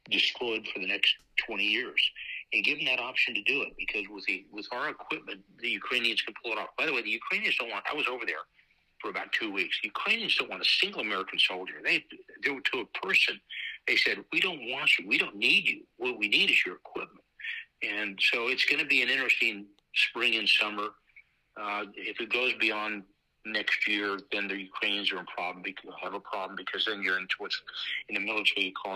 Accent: American